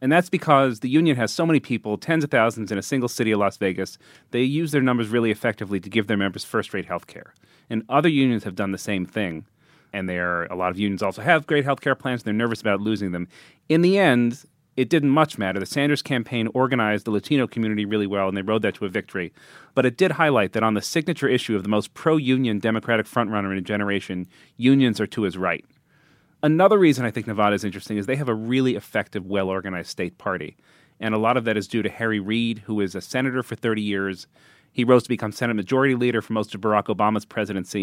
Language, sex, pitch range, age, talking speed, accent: English, male, 100-130 Hz, 30-49, 240 wpm, American